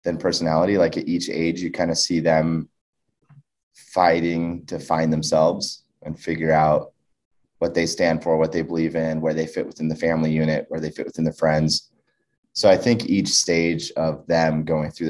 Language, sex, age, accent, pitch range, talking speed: English, male, 30-49, American, 75-85 Hz, 190 wpm